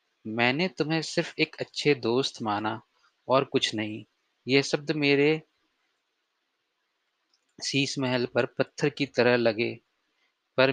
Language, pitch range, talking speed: Hindi, 120-140 Hz, 115 wpm